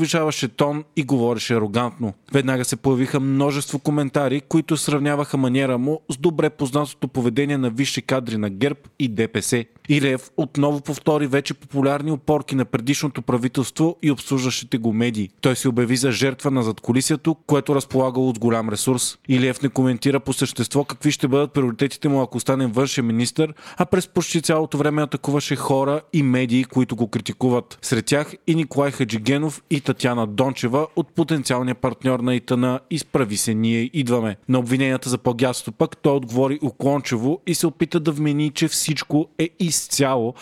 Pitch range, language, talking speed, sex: 125-150 Hz, Bulgarian, 160 wpm, male